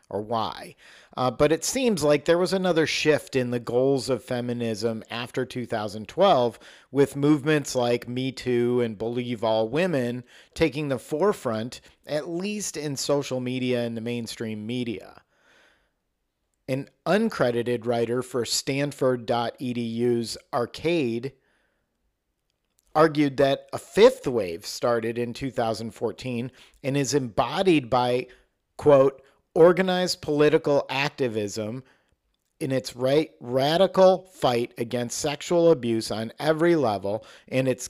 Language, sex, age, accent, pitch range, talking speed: English, male, 40-59, American, 120-150 Hz, 115 wpm